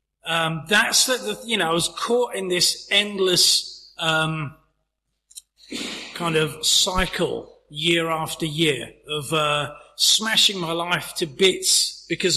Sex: male